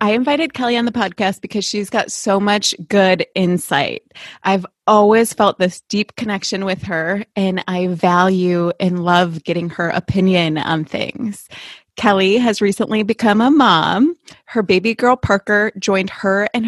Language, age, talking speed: English, 20-39, 160 wpm